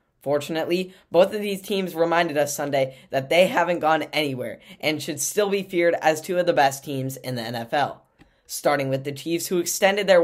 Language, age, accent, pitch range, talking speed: English, 10-29, American, 150-190 Hz, 200 wpm